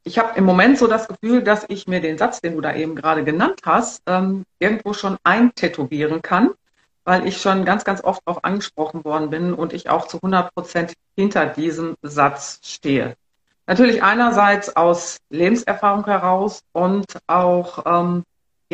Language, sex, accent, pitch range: German, female, German, 175-210 Hz